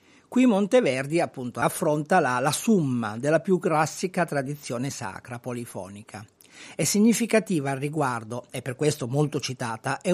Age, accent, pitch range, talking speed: 50-69, native, 130-180 Hz, 135 wpm